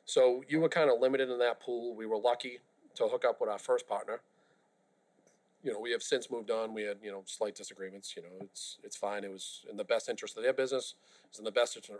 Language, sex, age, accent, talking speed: English, male, 40-59, American, 255 wpm